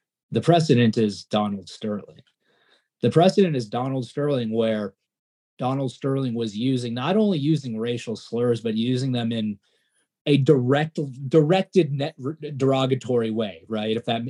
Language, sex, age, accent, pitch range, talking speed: English, male, 30-49, American, 110-140 Hz, 140 wpm